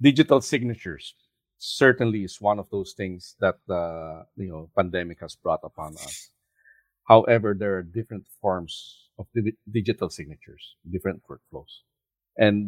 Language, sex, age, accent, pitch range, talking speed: English, male, 50-69, Filipino, 95-120 Hz, 135 wpm